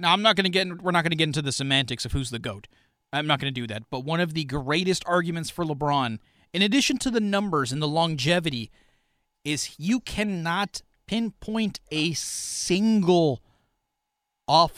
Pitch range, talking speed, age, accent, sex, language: 140-195 Hz, 190 wpm, 30-49, American, male, English